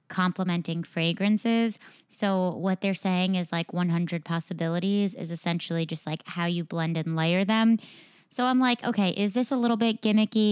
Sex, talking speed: female, 170 wpm